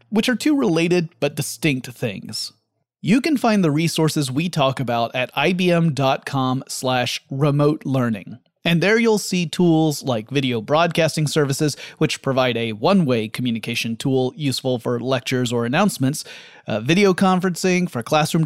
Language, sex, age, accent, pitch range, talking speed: English, male, 30-49, American, 130-180 Hz, 145 wpm